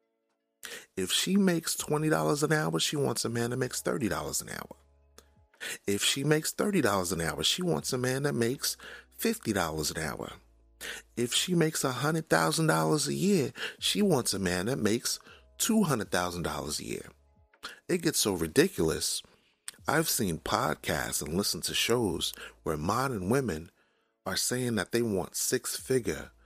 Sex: male